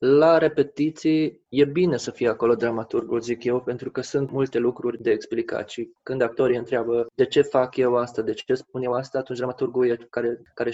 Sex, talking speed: male, 200 wpm